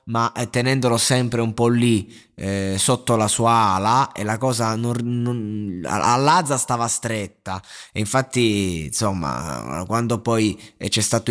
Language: Italian